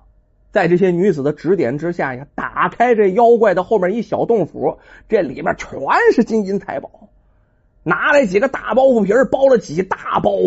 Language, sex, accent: Chinese, male, native